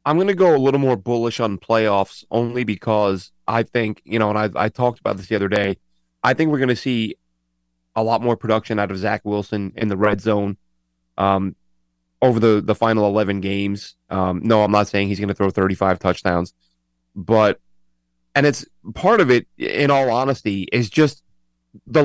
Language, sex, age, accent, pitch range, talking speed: English, male, 30-49, American, 95-130 Hz, 200 wpm